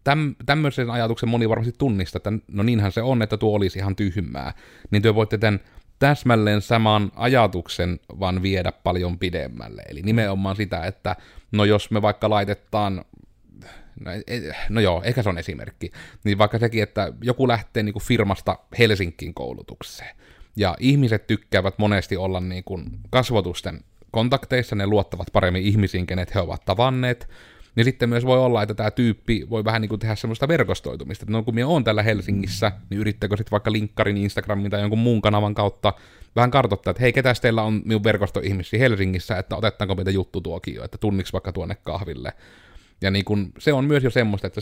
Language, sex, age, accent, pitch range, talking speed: Finnish, male, 30-49, native, 95-120 Hz, 175 wpm